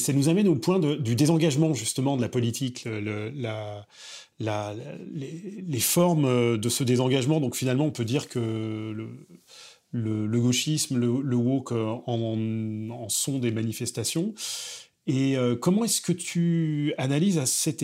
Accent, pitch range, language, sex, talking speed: French, 120-150 Hz, French, male, 160 wpm